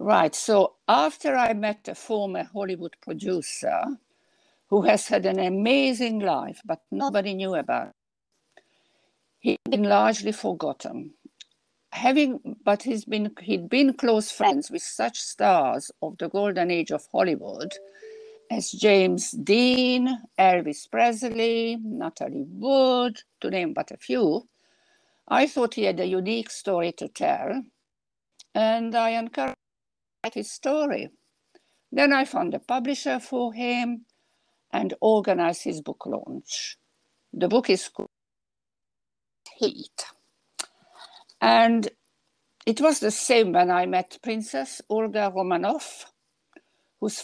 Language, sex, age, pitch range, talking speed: English, female, 60-79, 200-270 Hz, 120 wpm